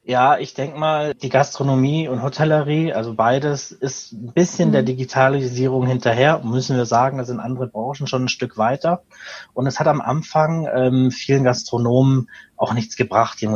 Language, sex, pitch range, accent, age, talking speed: German, male, 125-145 Hz, German, 30-49, 175 wpm